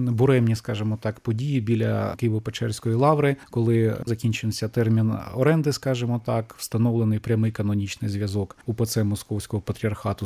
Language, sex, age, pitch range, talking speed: Ukrainian, male, 20-39, 105-125 Hz, 115 wpm